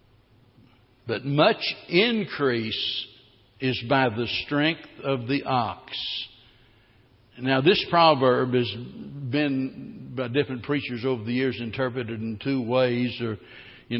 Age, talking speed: 60-79, 115 wpm